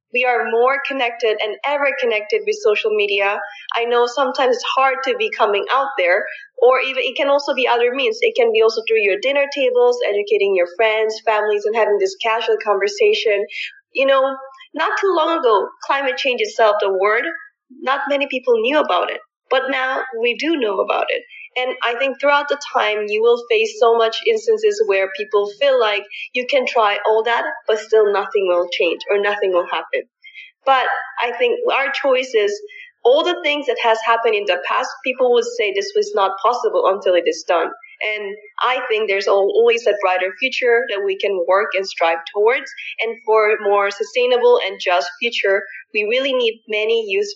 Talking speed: 195 wpm